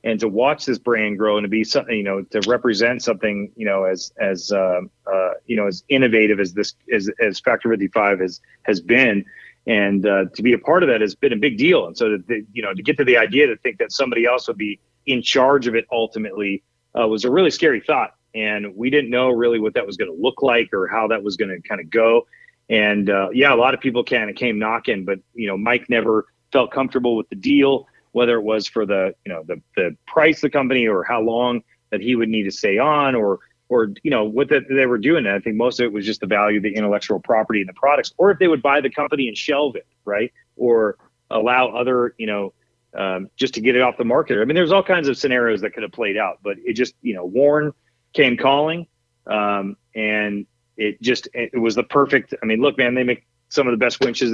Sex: male